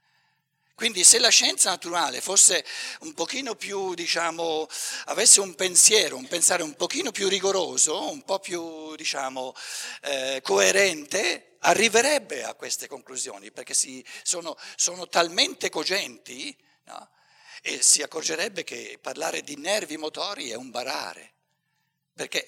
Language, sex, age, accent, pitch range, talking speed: Italian, male, 60-79, native, 160-250 Hz, 125 wpm